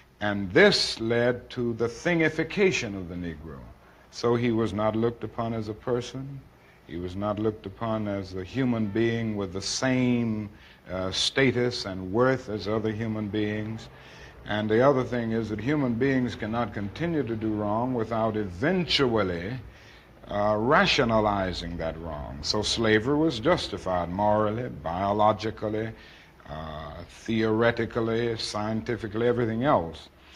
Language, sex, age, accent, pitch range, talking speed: English, male, 60-79, American, 95-120 Hz, 135 wpm